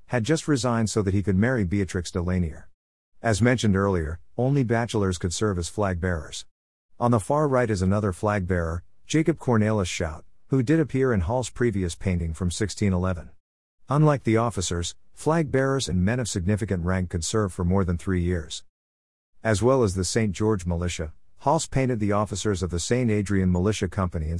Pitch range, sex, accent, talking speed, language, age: 90-120 Hz, male, American, 175 wpm, English, 50-69